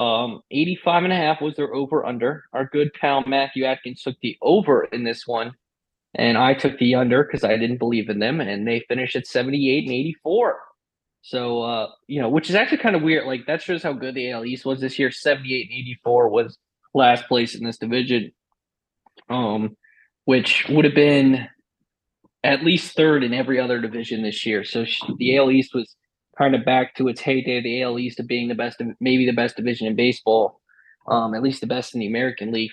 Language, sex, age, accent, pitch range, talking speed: English, male, 20-39, American, 120-150 Hz, 210 wpm